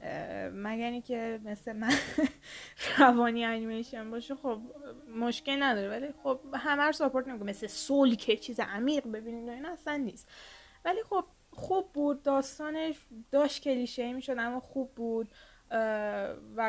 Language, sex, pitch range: Persian, female, 215-275 Hz